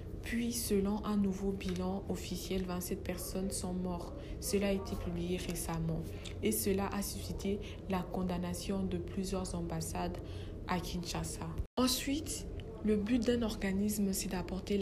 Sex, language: female, French